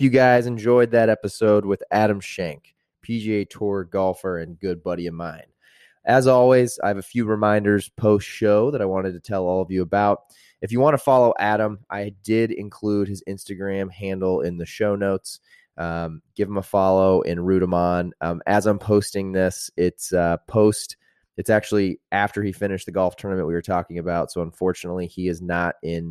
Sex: male